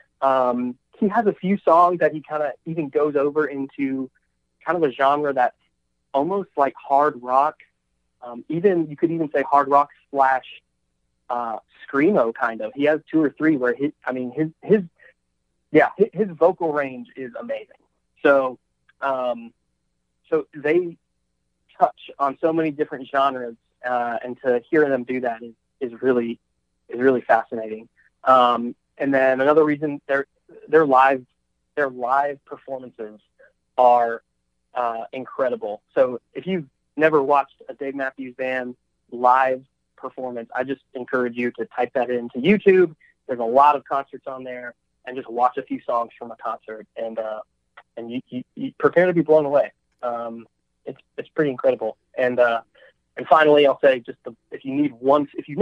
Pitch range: 120-150 Hz